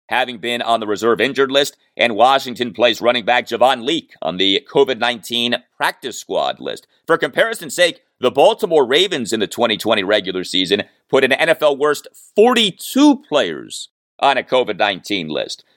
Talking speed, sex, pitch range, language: 155 wpm, male, 120-195 Hz, English